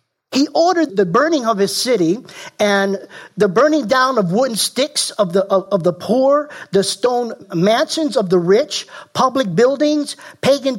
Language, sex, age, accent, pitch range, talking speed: English, male, 50-69, American, 180-240 Hz, 160 wpm